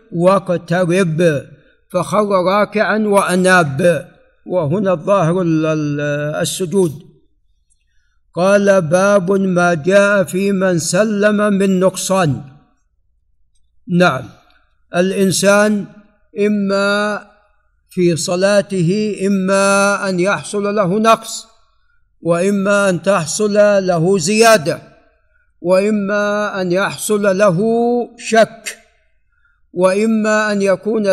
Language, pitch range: Arabic, 180-210 Hz